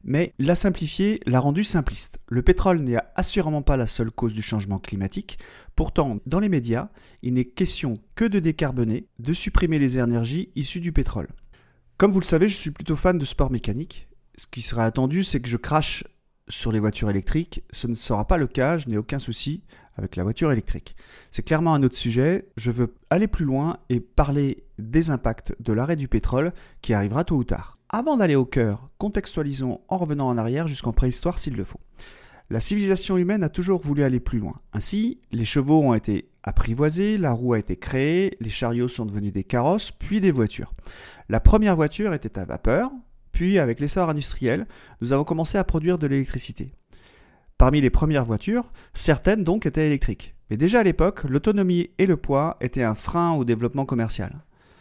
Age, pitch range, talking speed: 30-49, 115-175 Hz, 195 wpm